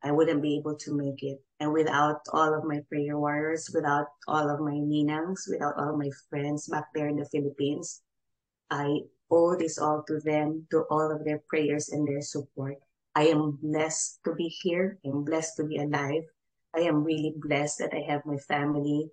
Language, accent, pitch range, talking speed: Filipino, native, 145-160 Hz, 200 wpm